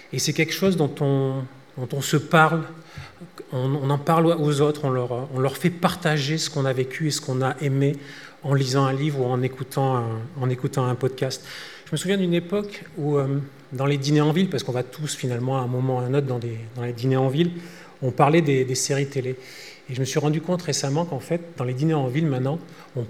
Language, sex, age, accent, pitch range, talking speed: French, male, 30-49, French, 130-155 Hz, 245 wpm